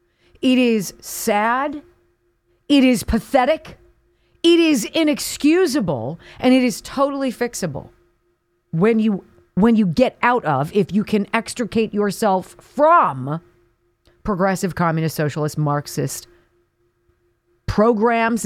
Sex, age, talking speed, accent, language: female, 40-59, 105 wpm, American, English